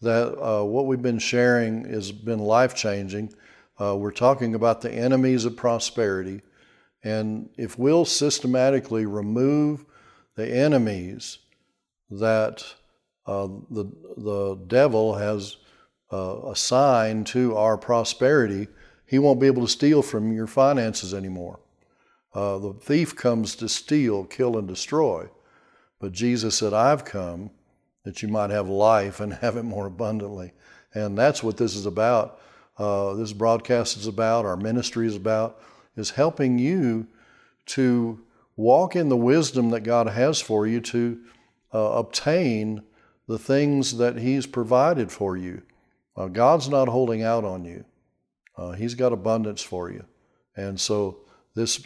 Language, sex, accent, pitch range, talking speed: English, male, American, 105-120 Hz, 145 wpm